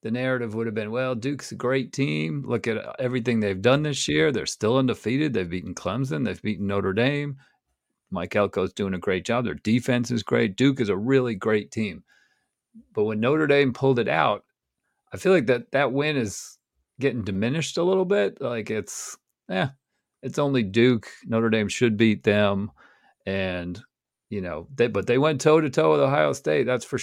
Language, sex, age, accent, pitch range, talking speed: English, male, 40-59, American, 105-135 Hz, 190 wpm